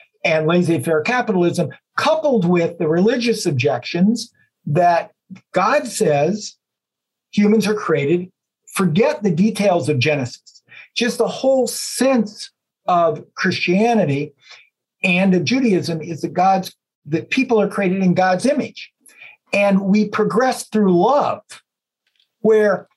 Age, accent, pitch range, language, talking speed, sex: 50-69, American, 165-220 Hz, English, 120 wpm, male